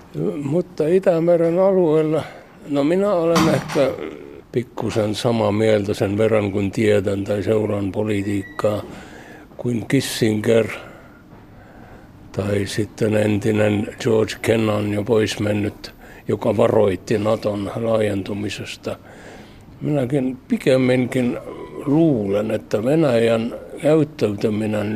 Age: 60-79